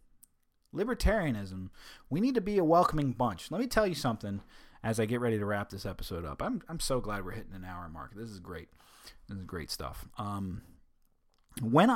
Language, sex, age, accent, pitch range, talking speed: English, male, 30-49, American, 95-120 Hz, 200 wpm